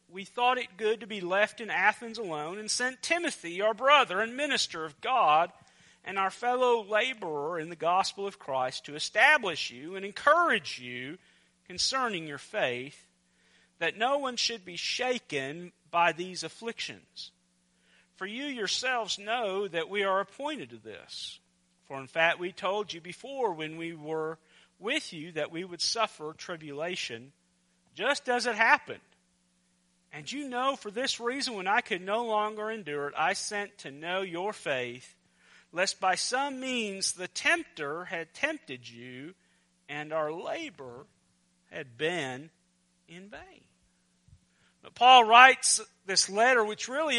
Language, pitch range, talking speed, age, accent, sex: English, 155-245 Hz, 150 wpm, 40-59, American, male